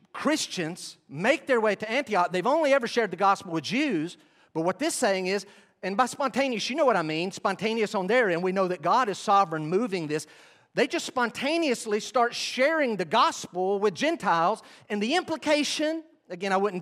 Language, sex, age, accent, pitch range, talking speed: English, male, 40-59, American, 170-255 Hz, 195 wpm